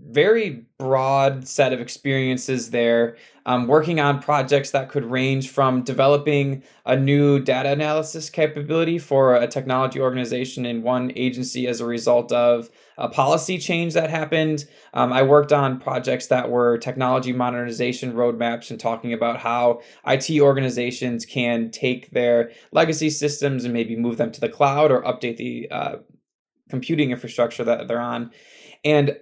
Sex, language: male, English